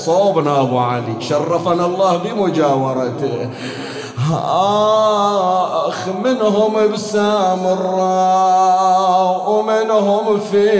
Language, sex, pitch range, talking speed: Arabic, male, 175-210 Hz, 60 wpm